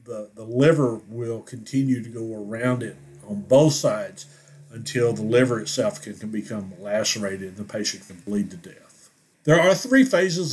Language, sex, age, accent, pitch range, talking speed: English, male, 50-69, American, 115-150 Hz, 175 wpm